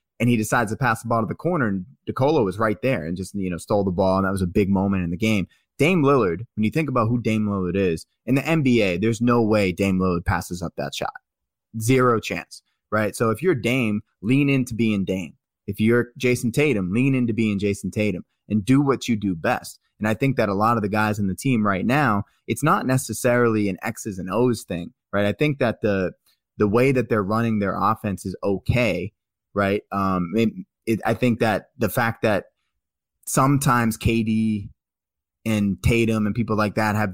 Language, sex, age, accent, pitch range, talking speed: English, male, 20-39, American, 100-120 Hz, 215 wpm